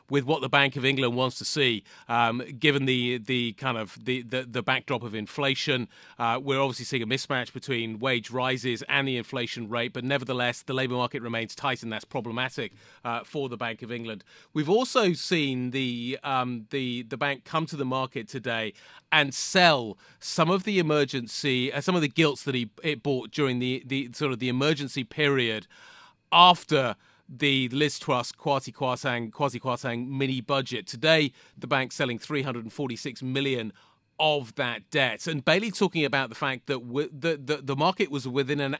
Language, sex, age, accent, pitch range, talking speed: English, male, 30-49, British, 125-150 Hz, 185 wpm